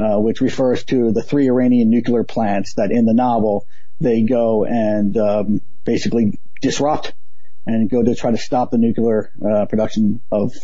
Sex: male